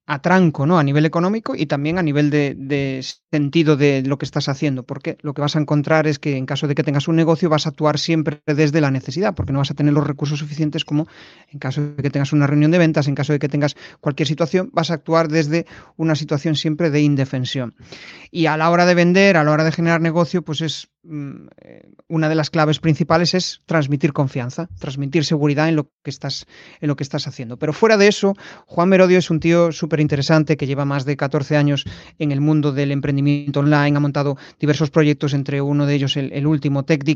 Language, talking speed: Spanish, 225 wpm